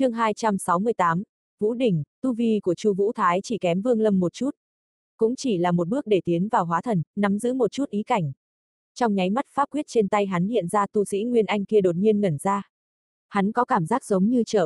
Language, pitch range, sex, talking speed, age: Vietnamese, 180-225 Hz, female, 235 wpm, 20-39